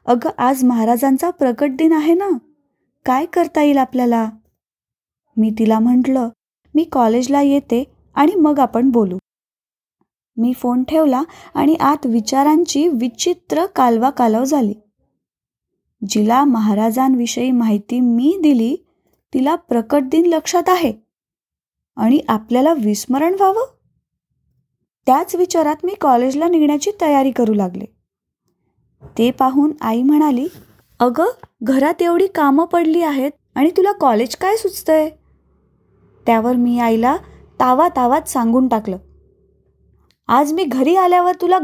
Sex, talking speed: female, 115 wpm